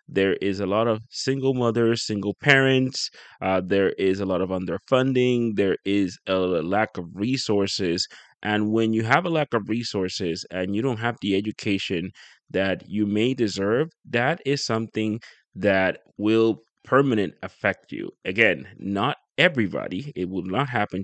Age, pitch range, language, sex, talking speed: 20-39, 95-115 Hz, English, male, 155 wpm